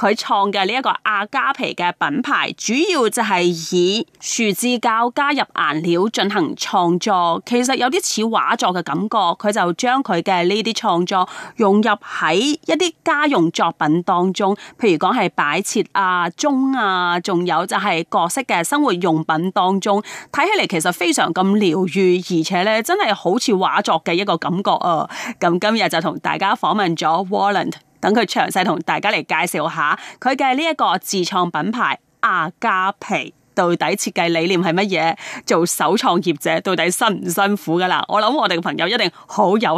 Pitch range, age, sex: 175-235 Hz, 30-49, female